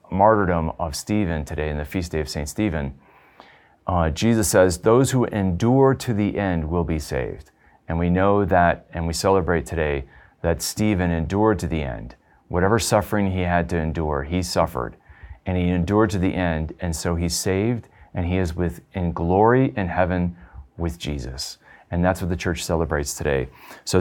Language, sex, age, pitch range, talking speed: English, male, 30-49, 85-105 Hz, 180 wpm